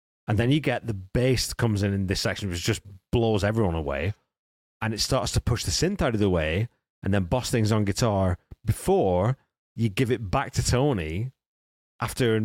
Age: 30-49